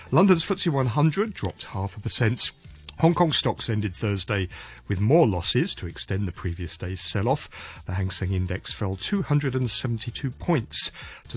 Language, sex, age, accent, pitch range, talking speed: English, male, 50-69, British, 95-130 Hz, 155 wpm